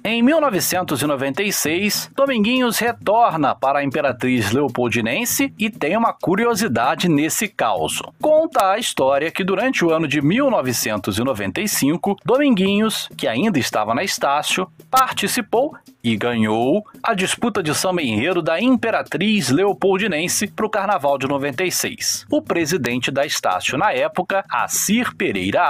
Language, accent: Portuguese, Brazilian